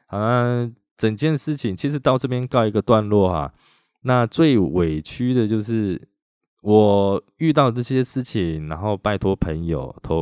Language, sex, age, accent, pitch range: Chinese, male, 20-39, native, 85-115 Hz